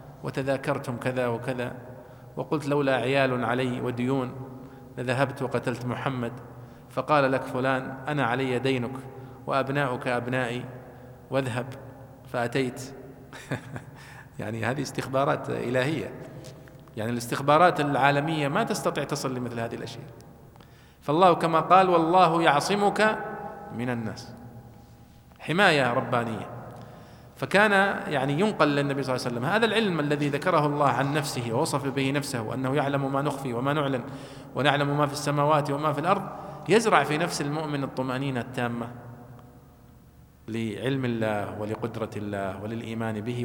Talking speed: 120 wpm